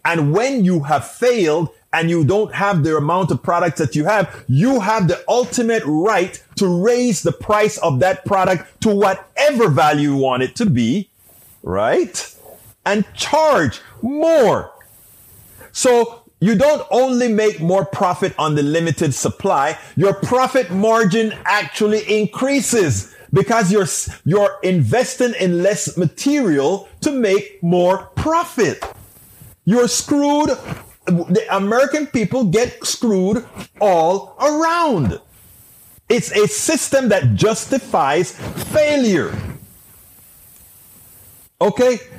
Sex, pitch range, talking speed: male, 175-245 Hz, 120 wpm